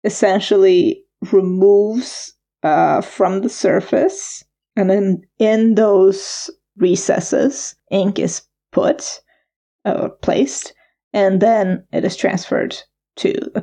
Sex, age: female, 20-39